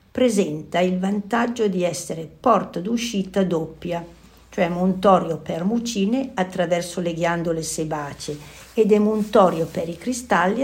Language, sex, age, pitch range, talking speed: Italian, female, 50-69, 165-205 Hz, 120 wpm